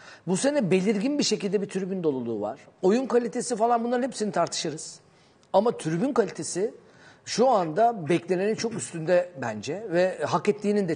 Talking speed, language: 155 wpm, Turkish